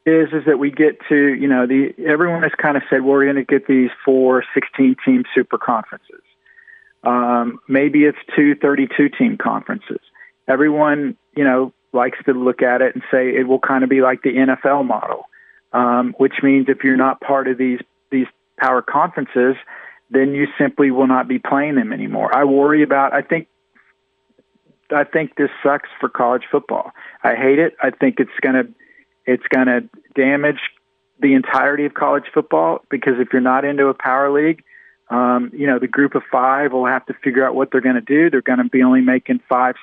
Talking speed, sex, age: 200 wpm, male, 50-69